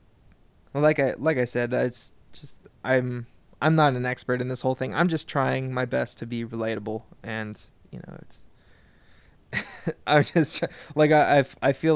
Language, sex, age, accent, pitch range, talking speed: English, male, 20-39, American, 125-150 Hz, 175 wpm